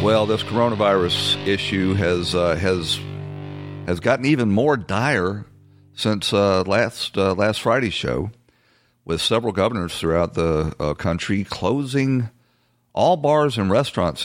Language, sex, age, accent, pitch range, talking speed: English, male, 50-69, American, 85-105 Hz, 130 wpm